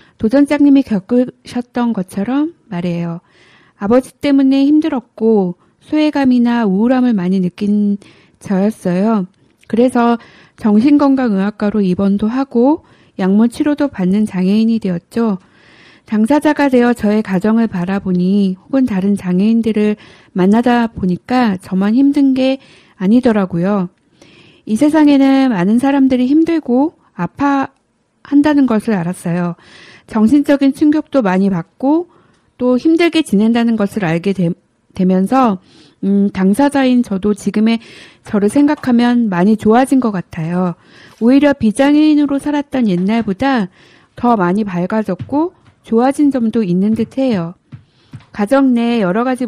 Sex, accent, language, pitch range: female, native, Korean, 195-265 Hz